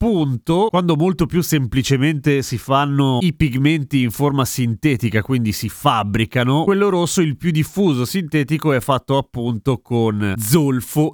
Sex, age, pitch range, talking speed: male, 30-49, 125-170 Hz, 140 wpm